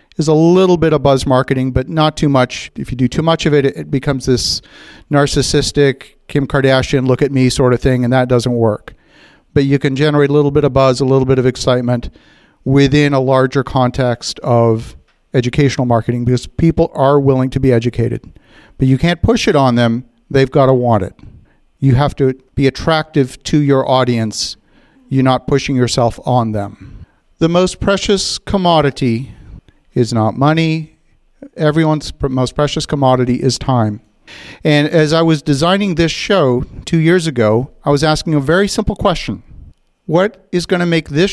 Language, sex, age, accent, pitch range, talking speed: English, male, 40-59, American, 125-160 Hz, 180 wpm